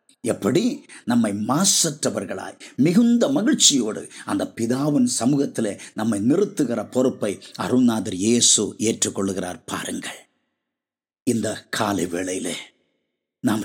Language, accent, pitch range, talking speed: English, Indian, 115-190 Hz, 85 wpm